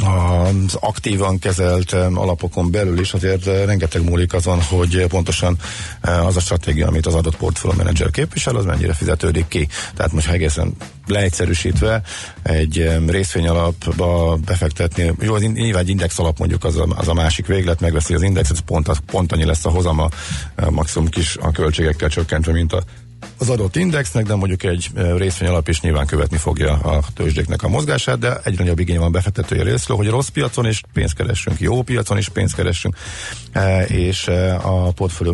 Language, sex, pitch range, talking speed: Hungarian, male, 85-100 Hz, 170 wpm